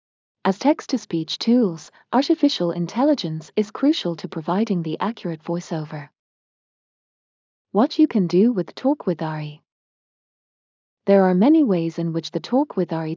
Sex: female